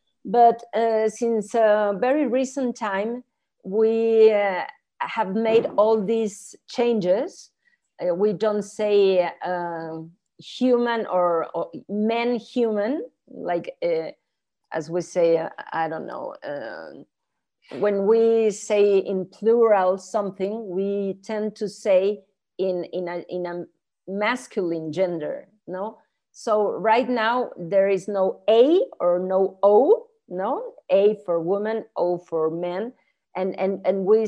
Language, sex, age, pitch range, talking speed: English, female, 40-59, 190-240 Hz, 130 wpm